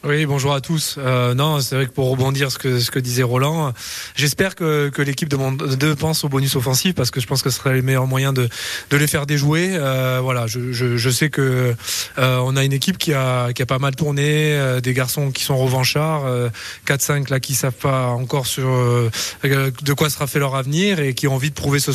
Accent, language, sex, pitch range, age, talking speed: French, French, male, 125-145 Hz, 20-39, 245 wpm